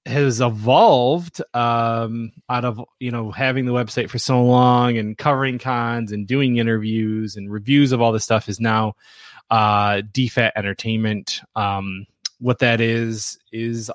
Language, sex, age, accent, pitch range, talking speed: English, male, 20-39, American, 110-135 Hz, 150 wpm